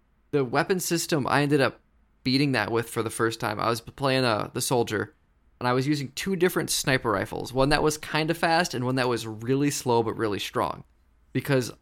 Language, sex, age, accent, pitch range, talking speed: English, male, 20-39, American, 110-140 Hz, 220 wpm